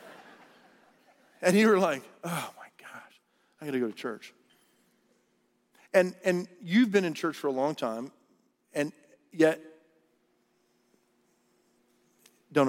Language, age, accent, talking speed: English, 40-59, American, 125 wpm